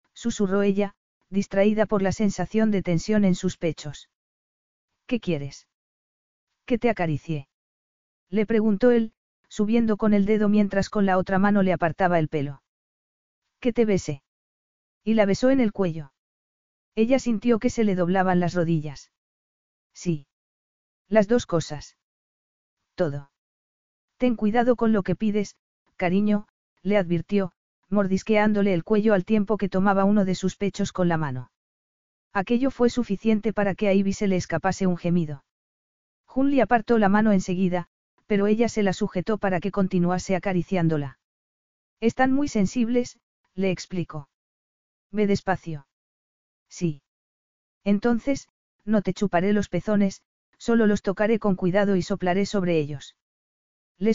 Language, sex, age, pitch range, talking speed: Spanish, female, 40-59, 180-215 Hz, 140 wpm